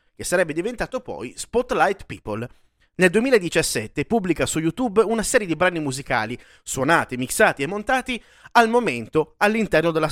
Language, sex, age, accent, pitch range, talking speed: Italian, male, 30-49, native, 140-225 Hz, 140 wpm